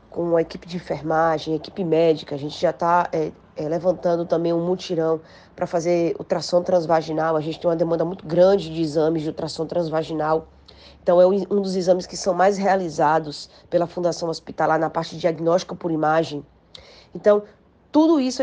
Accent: Brazilian